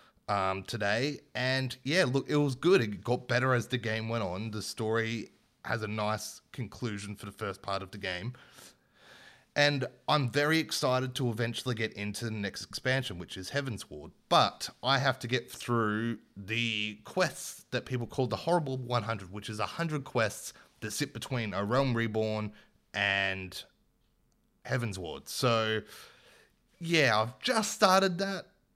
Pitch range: 105-135 Hz